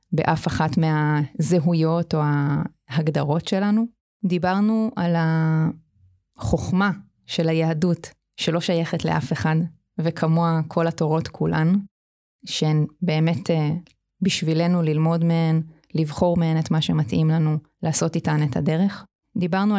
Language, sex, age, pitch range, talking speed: Hebrew, female, 20-39, 160-175 Hz, 105 wpm